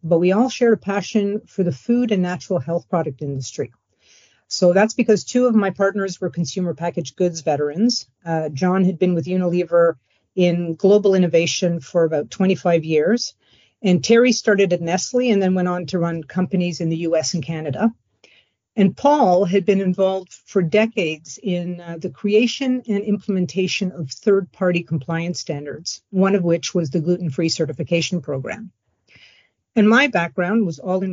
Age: 50-69